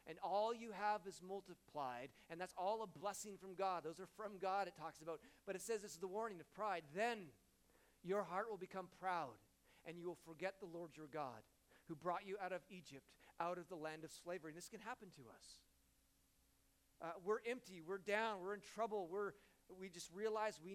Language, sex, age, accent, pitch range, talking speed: English, male, 40-59, American, 170-215 Hz, 215 wpm